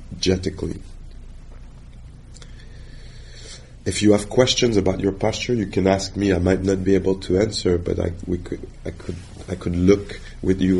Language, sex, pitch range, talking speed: English, male, 90-105 Hz, 165 wpm